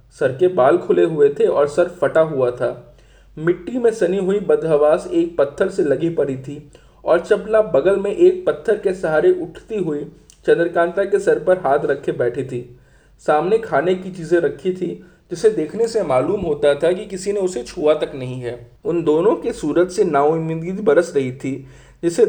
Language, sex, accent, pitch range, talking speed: Hindi, male, native, 135-215 Hz, 190 wpm